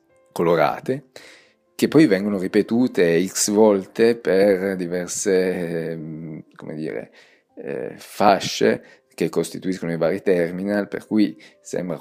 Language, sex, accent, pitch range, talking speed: Italian, male, native, 85-100 Hz, 100 wpm